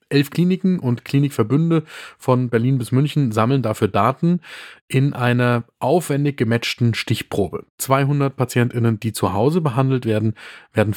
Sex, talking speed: male, 130 wpm